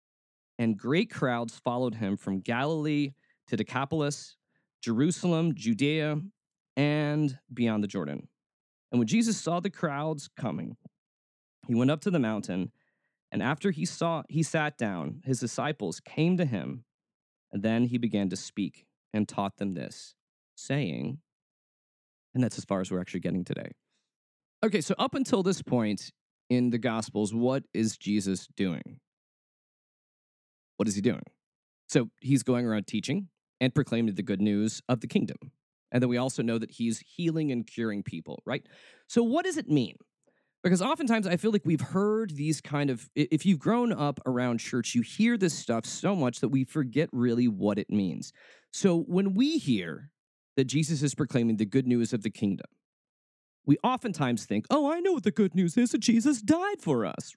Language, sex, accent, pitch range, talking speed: English, male, American, 115-180 Hz, 175 wpm